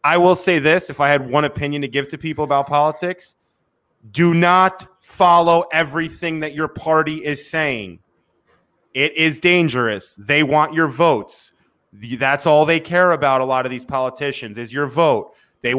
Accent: American